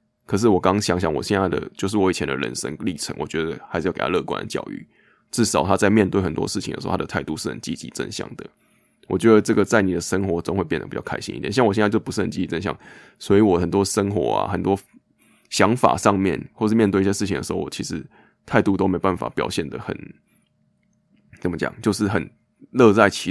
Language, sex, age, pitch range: Chinese, male, 20-39, 95-105 Hz